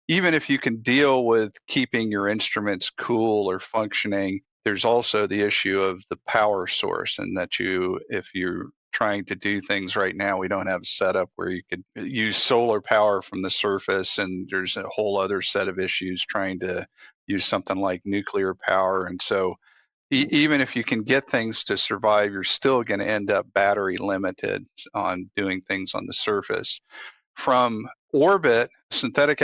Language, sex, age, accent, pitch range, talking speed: English, male, 50-69, American, 100-120 Hz, 175 wpm